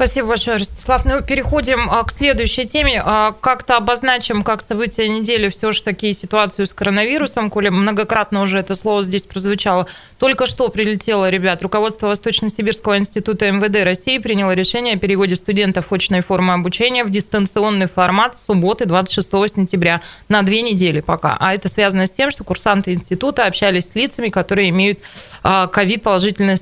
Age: 20-39